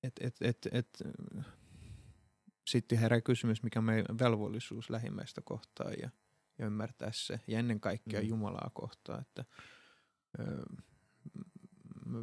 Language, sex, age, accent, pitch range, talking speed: Finnish, male, 30-49, native, 105-125 Hz, 125 wpm